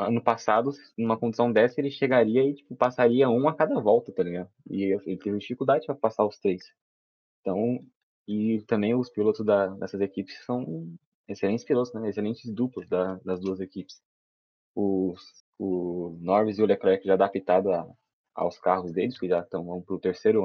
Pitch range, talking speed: 95-115 Hz, 175 wpm